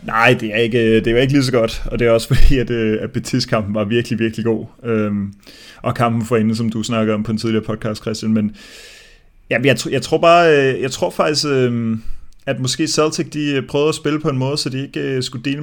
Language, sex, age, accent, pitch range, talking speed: Danish, male, 30-49, native, 115-130 Hz, 240 wpm